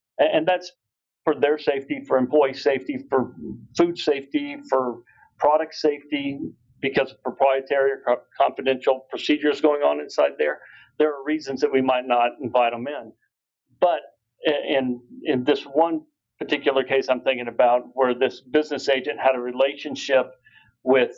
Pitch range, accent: 125-150 Hz, American